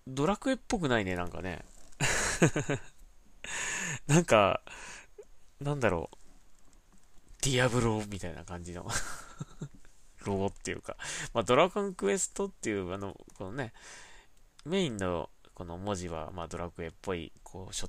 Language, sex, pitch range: Japanese, male, 85-125 Hz